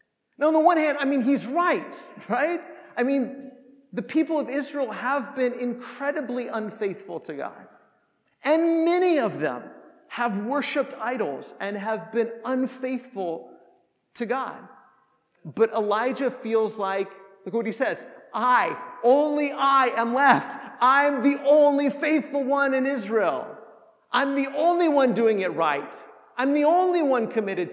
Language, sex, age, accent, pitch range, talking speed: English, male, 40-59, American, 225-290 Hz, 145 wpm